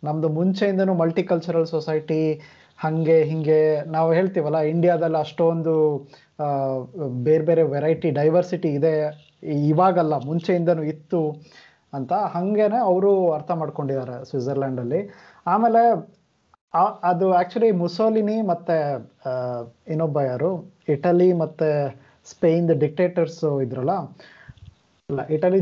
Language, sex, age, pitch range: Kannada, male, 20-39, 155-195 Hz